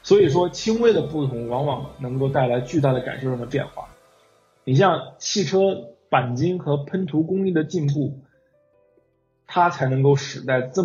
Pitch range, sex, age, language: 125-155 Hz, male, 20-39, Chinese